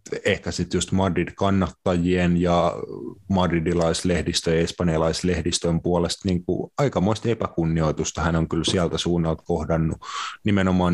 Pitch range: 85-90 Hz